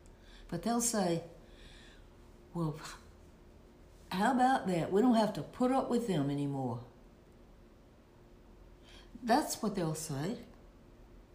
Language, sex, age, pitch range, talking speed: English, female, 60-79, 145-205 Hz, 105 wpm